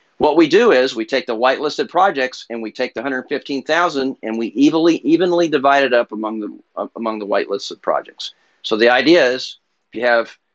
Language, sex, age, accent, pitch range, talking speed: English, male, 50-69, American, 120-165 Hz, 190 wpm